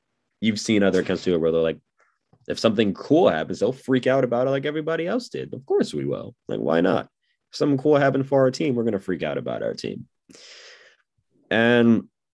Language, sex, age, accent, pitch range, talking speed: English, male, 20-39, American, 90-130 Hz, 215 wpm